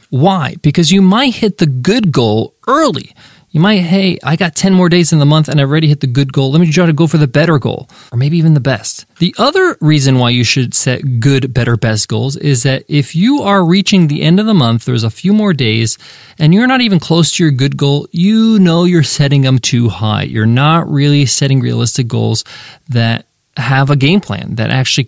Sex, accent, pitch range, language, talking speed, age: male, American, 130-175 Hz, English, 230 wpm, 20-39